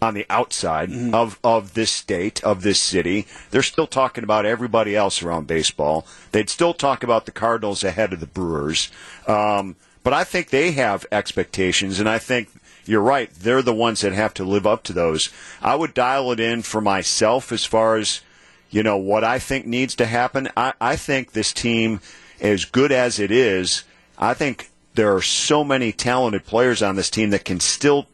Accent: American